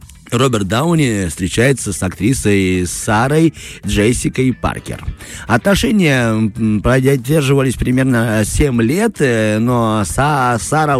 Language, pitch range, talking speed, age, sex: Russian, 100-130 Hz, 80 wpm, 30-49, male